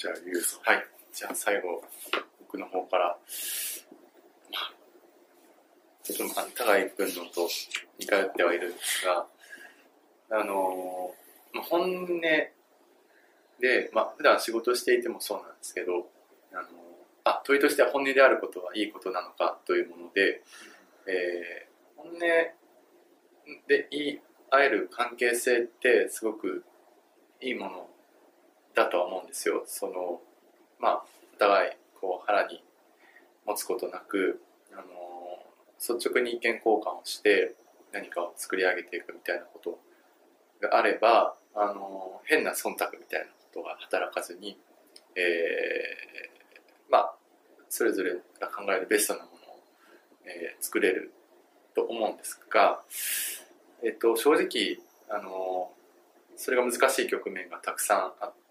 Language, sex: English, male